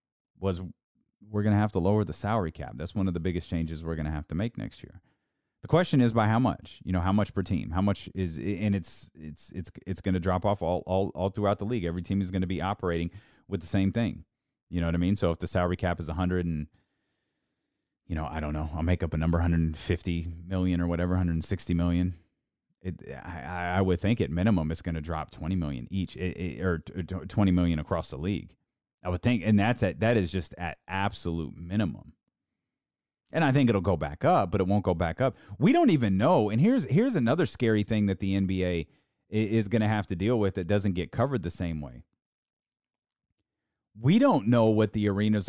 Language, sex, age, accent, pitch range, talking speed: English, male, 30-49, American, 85-110 Hz, 225 wpm